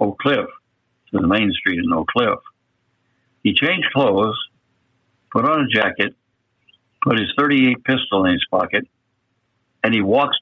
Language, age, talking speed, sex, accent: English, 60-79, 140 wpm, male, American